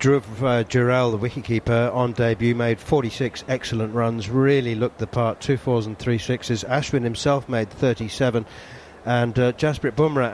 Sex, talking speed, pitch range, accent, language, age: male, 170 wpm, 115-140 Hz, British, English, 50-69